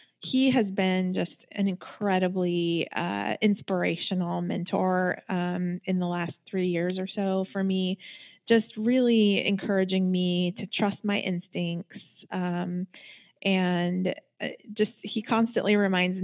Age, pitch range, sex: 20-39, 185-225 Hz, female